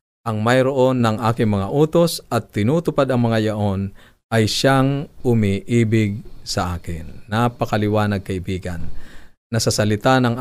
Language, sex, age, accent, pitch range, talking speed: Filipino, male, 50-69, native, 95-120 Hz, 120 wpm